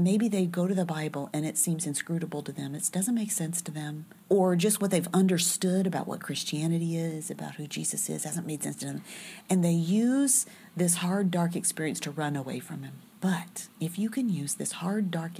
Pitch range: 160-205 Hz